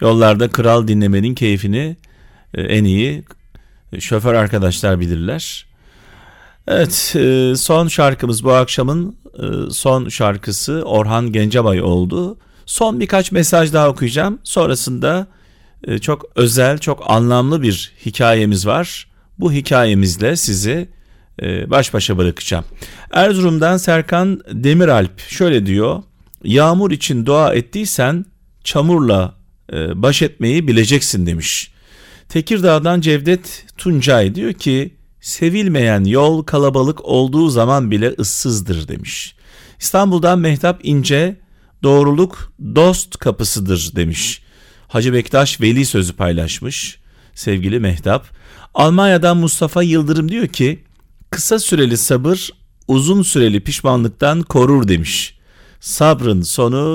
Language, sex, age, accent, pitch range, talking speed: Turkish, male, 40-59, native, 105-160 Hz, 100 wpm